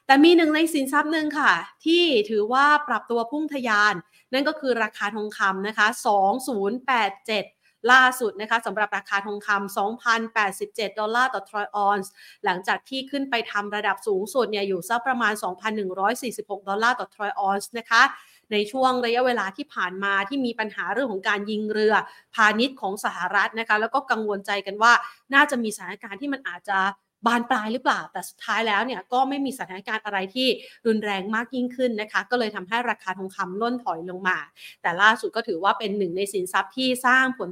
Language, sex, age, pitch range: Thai, female, 30-49, 205-255 Hz